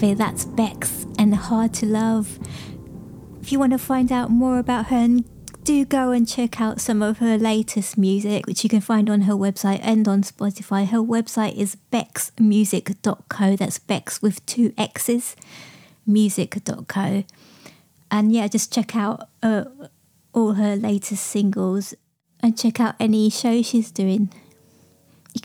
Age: 20-39